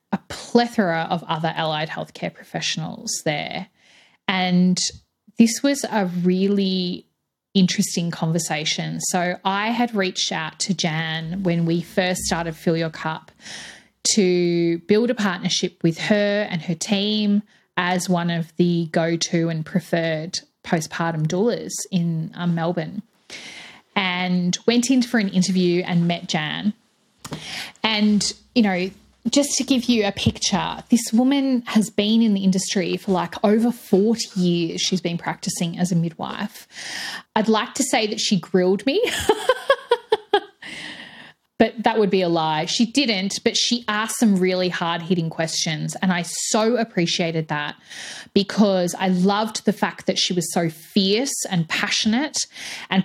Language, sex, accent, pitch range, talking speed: English, female, Australian, 170-220 Hz, 145 wpm